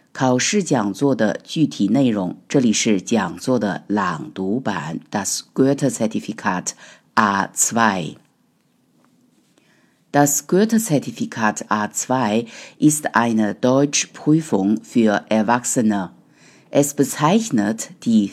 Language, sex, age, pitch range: Chinese, female, 50-69, 115-155 Hz